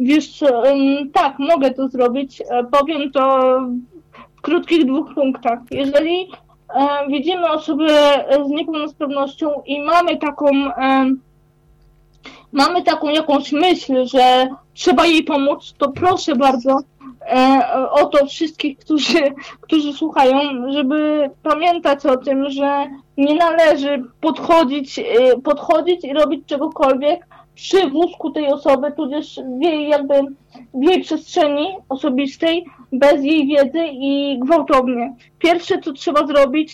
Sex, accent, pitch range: female, native, 275-320 Hz